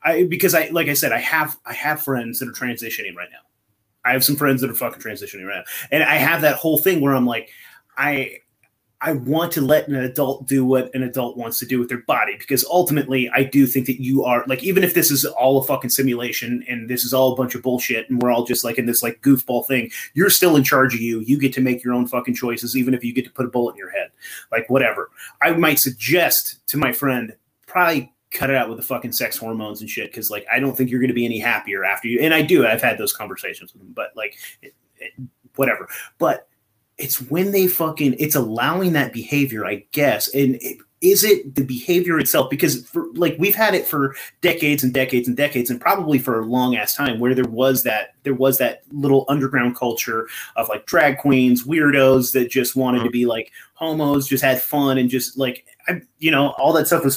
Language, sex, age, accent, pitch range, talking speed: English, male, 30-49, American, 125-140 Hz, 240 wpm